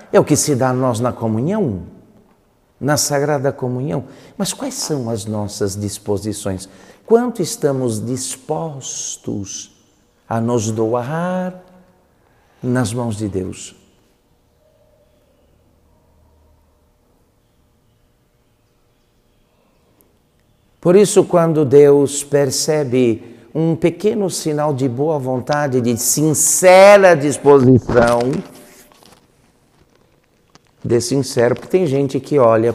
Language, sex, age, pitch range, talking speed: Portuguese, male, 60-79, 110-150 Hz, 90 wpm